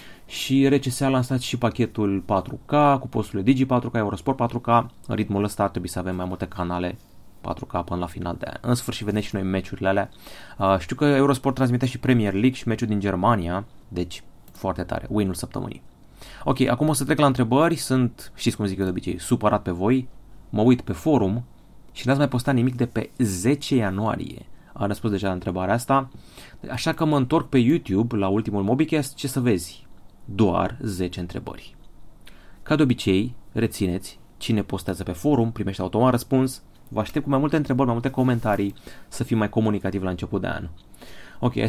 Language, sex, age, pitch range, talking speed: Romanian, male, 30-49, 100-130 Hz, 190 wpm